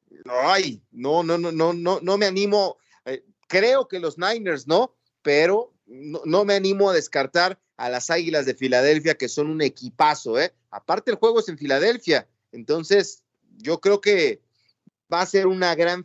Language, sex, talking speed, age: Spanish, male, 175 wpm, 40-59